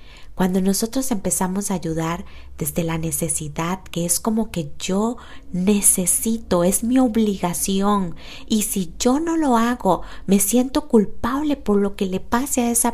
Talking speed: 155 wpm